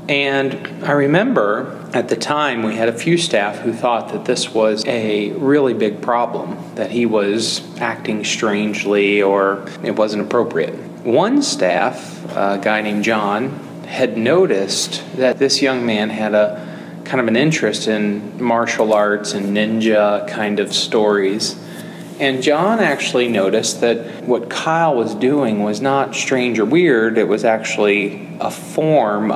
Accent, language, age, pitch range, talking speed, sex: American, English, 30-49, 105-135 Hz, 150 wpm, male